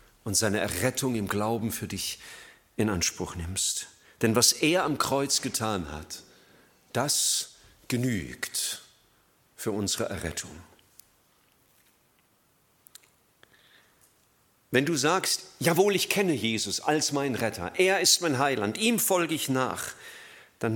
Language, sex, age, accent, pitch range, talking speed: German, male, 50-69, German, 105-165 Hz, 120 wpm